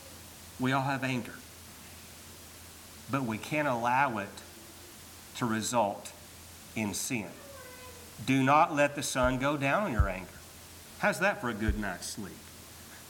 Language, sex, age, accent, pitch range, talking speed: English, male, 50-69, American, 95-140 Hz, 135 wpm